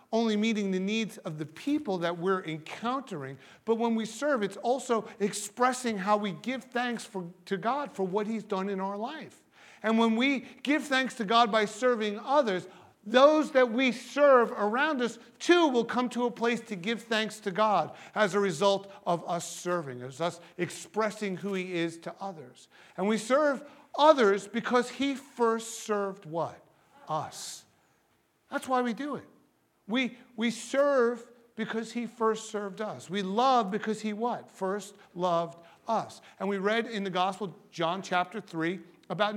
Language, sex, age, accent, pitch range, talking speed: English, male, 50-69, American, 190-240 Hz, 170 wpm